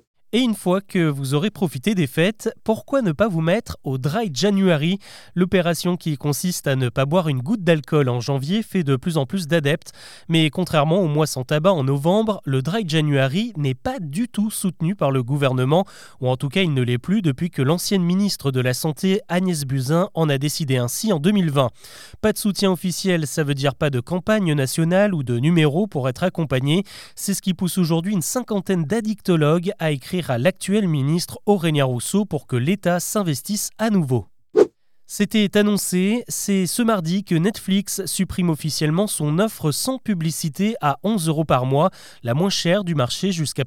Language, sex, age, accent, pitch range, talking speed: French, male, 20-39, French, 145-195 Hz, 190 wpm